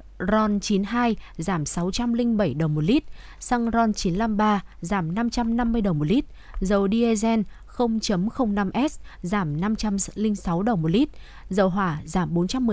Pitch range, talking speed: 180-225 Hz, 150 wpm